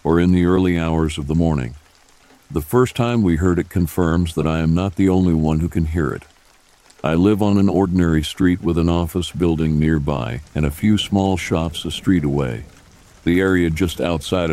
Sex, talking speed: male, 200 wpm